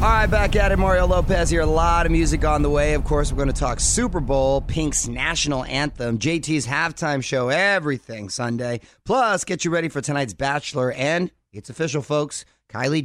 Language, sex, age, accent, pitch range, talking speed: English, male, 30-49, American, 115-155 Hz, 200 wpm